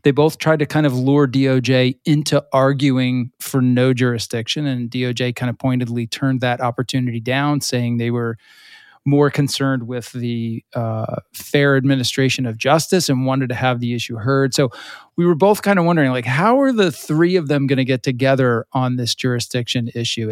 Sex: male